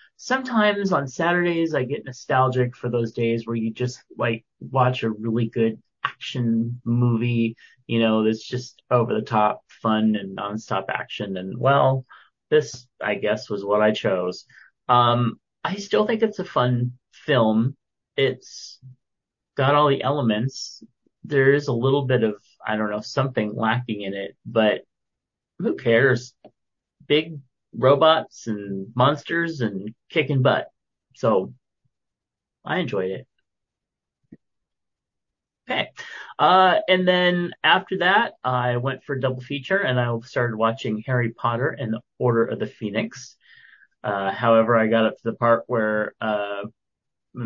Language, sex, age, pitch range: English, male, 30-49, 110-135 Hz